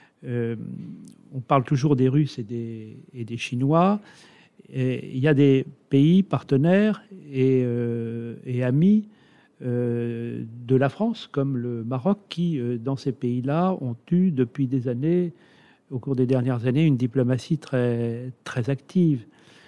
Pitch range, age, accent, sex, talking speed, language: 125-160 Hz, 40-59, French, male, 150 wpm, French